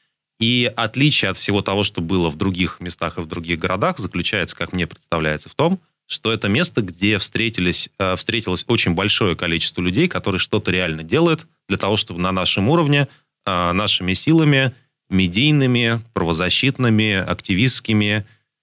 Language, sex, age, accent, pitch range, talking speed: Russian, male, 30-49, native, 85-110 Hz, 140 wpm